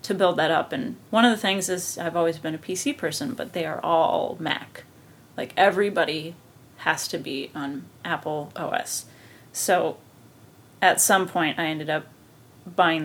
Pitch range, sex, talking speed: 165-195 Hz, female, 170 wpm